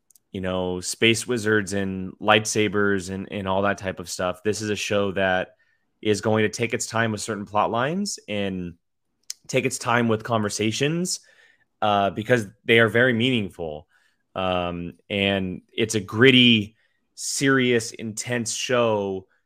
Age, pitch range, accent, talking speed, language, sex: 20-39, 100-125 Hz, American, 150 wpm, English, male